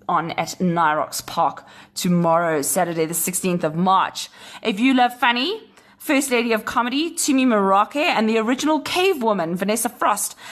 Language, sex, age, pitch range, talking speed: English, female, 20-39, 195-245 Hz, 150 wpm